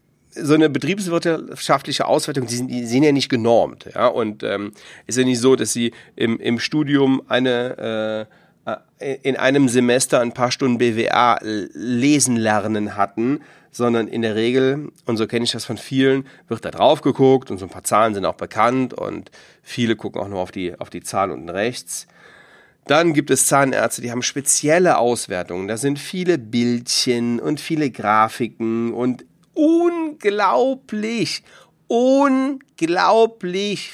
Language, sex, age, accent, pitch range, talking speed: German, male, 40-59, German, 115-165 Hz, 160 wpm